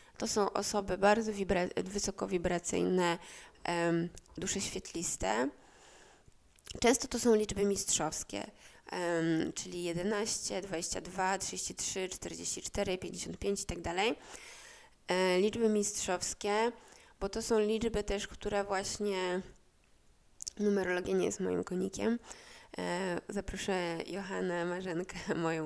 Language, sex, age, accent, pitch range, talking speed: Polish, female, 20-39, native, 175-205 Hz, 95 wpm